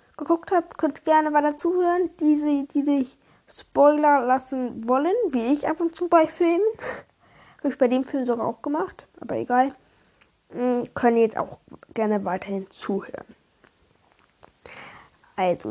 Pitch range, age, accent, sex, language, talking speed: 230-315 Hz, 10-29, German, female, German, 150 wpm